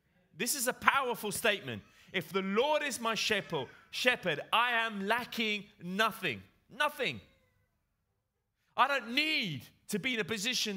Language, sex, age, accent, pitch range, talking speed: Italian, male, 30-49, British, 170-235 Hz, 135 wpm